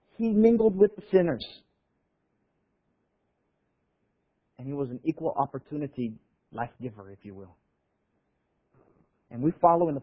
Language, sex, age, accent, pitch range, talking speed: English, male, 40-59, American, 130-205 Hz, 125 wpm